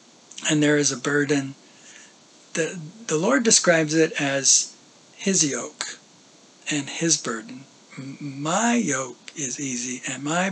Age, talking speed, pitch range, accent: 50-69, 125 wpm, 140-165 Hz, American